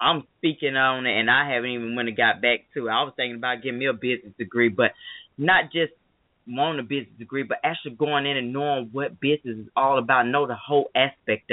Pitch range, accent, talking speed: 120-165 Hz, American, 235 wpm